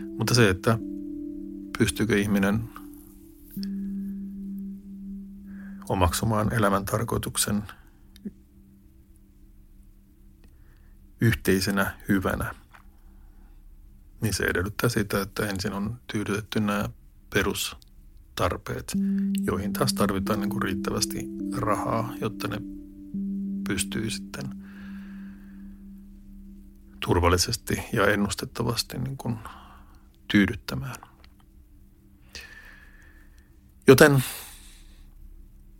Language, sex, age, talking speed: Finnish, male, 50-69, 55 wpm